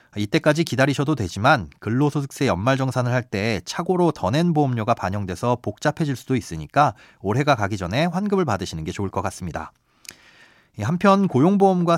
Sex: male